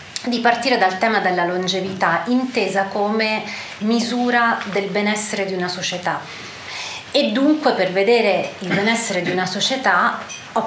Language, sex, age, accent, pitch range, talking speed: Italian, female, 30-49, native, 185-230 Hz, 135 wpm